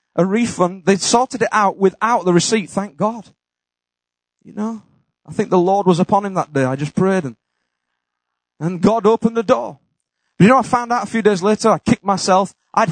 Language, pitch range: English, 170-250 Hz